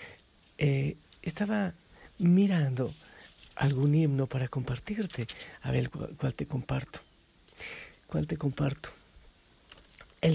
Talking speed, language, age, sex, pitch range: 95 wpm, Spanish, 50-69, male, 120-155 Hz